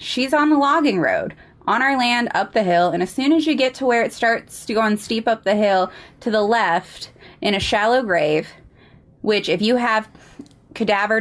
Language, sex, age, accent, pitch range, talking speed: English, female, 20-39, American, 175-240 Hz, 215 wpm